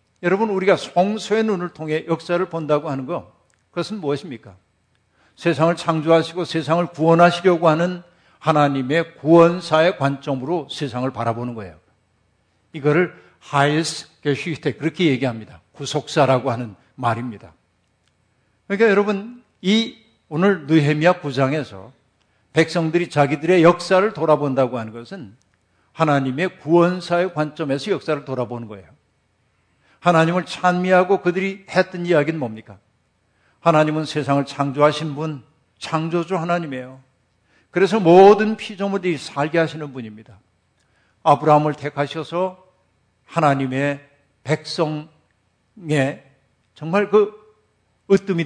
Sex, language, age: male, Korean, 50-69